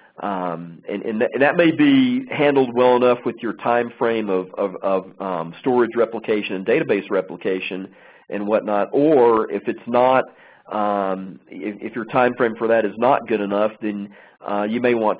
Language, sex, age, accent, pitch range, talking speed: English, male, 40-59, American, 105-140 Hz, 170 wpm